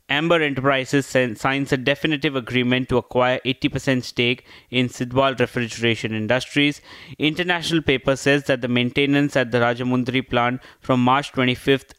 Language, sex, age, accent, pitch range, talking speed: English, male, 20-39, Indian, 120-140 Hz, 135 wpm